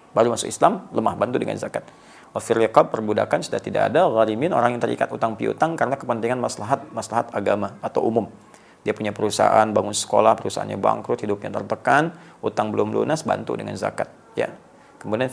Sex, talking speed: male, 160 wpm